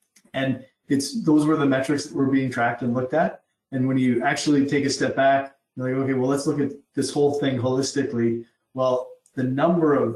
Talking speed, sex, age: 215 wpm, male, 30-49